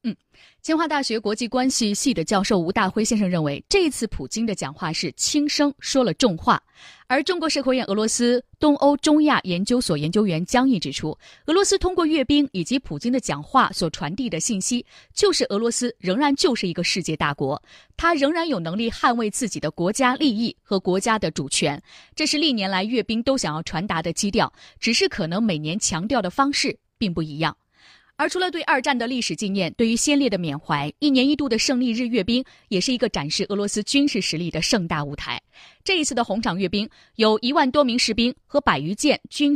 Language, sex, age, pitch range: Chinese, female, 20-39, 185-280 Hz